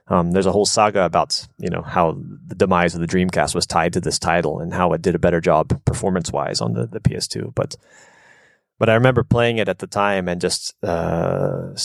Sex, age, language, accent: male, 30-49, Swedish, American